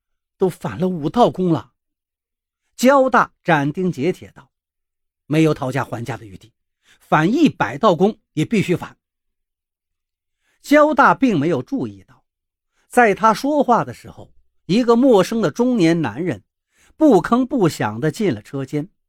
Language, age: Chinese, 50-69